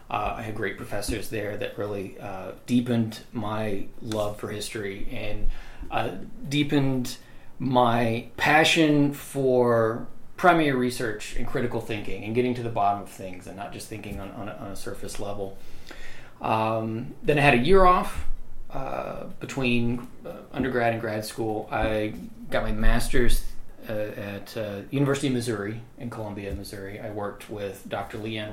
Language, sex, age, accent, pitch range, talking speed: English, male, 30-49, American, 105-130 Hz, 155 wpm